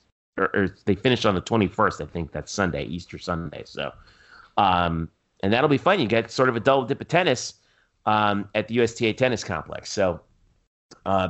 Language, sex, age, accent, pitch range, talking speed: English, male, 30-49, American, 100-120 Hz, 185 wpm